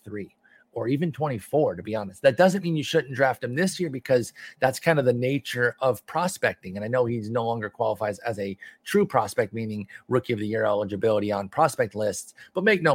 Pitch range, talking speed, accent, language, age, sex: 115-150 Hz, 220 wpm, American, English, 30-49, male